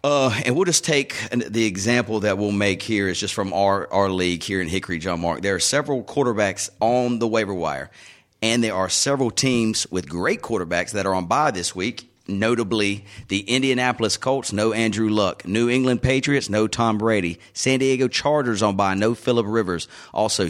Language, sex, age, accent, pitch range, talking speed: English, male, 30-49, American, 100-125 Hz, 195 wpm